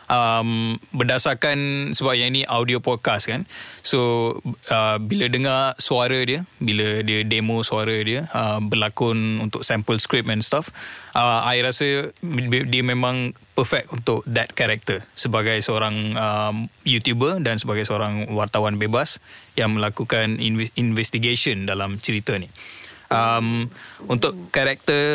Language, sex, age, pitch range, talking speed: Malay, male, 20-39, 110-130 Hz, 110 wpm